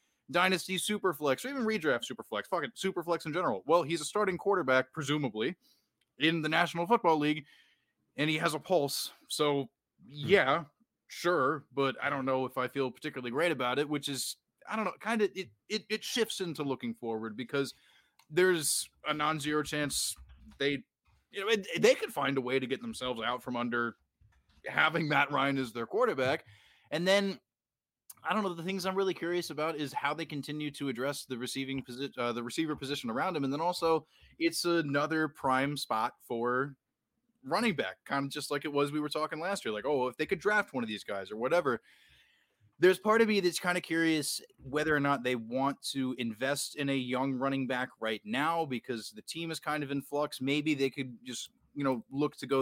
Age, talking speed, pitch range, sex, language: 20-39, 200 wpm, 130-170 Hz, male, English